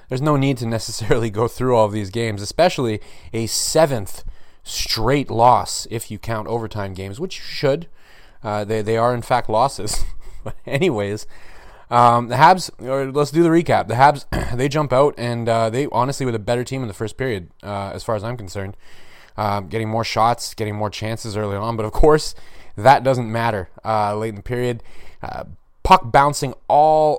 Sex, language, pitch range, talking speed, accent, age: male, English, 100-125 Hz, 195 wpm, American, 30-49